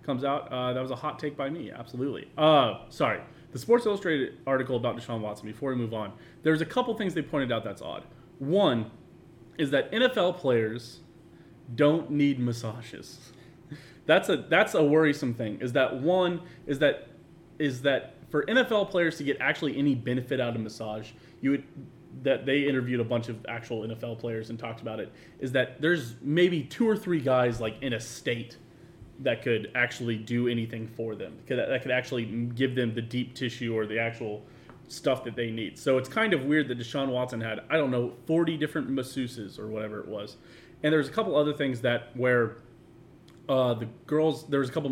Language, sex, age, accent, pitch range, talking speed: English, male, 30-49, American, 120-155 Hz, 200 wpm